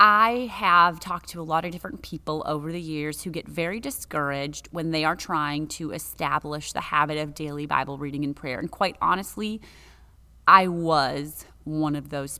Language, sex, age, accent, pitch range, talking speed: English, female, 30-49, American, 150-185 Hz, 185 wpm